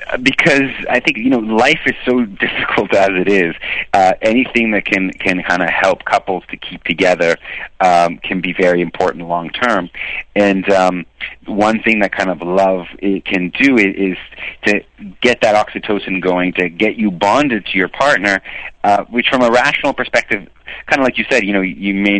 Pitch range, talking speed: 95-110 Hz, 190 wpm